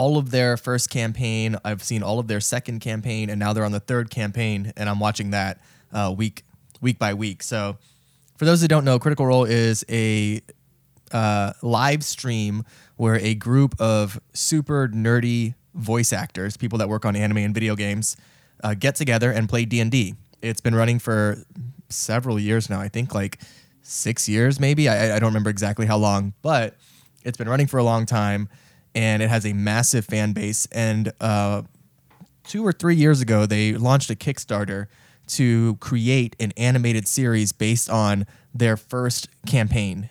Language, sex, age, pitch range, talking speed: English, male, 10-29, 110-130 Hz, 180 wpm